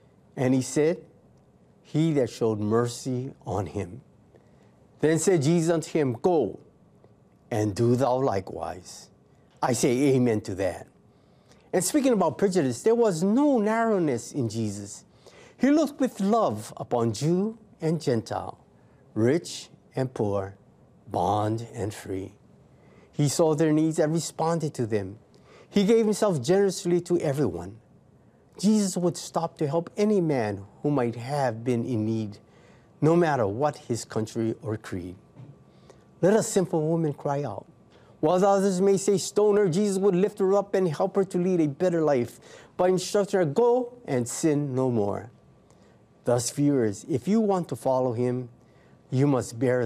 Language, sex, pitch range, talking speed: English, male, 115-180 Hz, 150 wpm